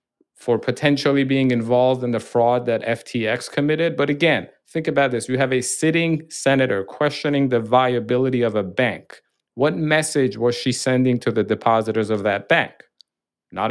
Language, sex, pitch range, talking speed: English, male, 115-140 Hz, 165 wpm